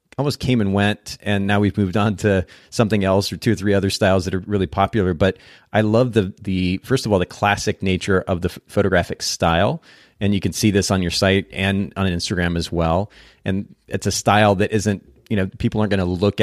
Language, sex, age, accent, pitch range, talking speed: English, male, 30-49, American, 90-105 Hz, 230 wpm